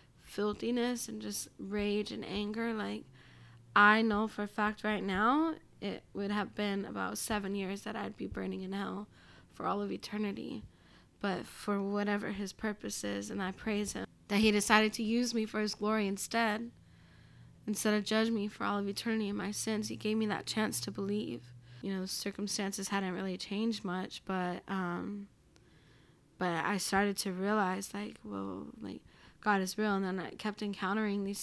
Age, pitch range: 10-29, 195-215 Hz